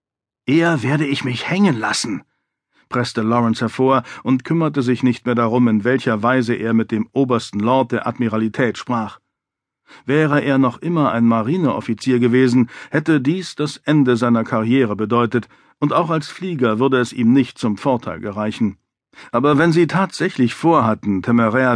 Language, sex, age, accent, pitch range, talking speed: German, male, 50-69, German, 115-140 Hz, 155 wpm